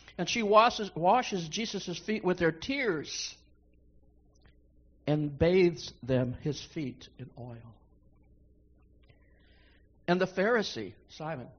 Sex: male